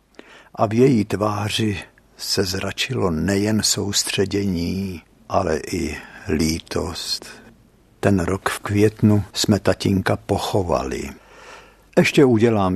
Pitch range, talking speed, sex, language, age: 95-125 Hz, 95 wpm, male, Czech, 60-79